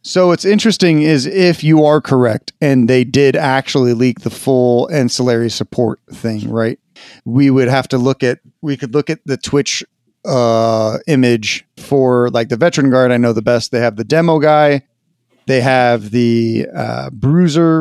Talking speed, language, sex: 175 wpm, English, male